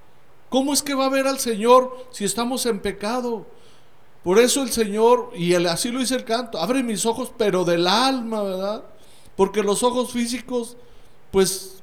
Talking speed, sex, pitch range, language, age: 170 wpm, male, 180-230 Hz, Spanish, 60-79